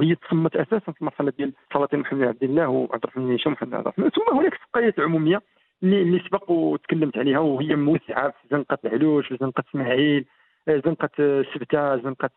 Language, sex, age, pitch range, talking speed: Arabic, male, 50-69, 140-205 Hz, 170 wpm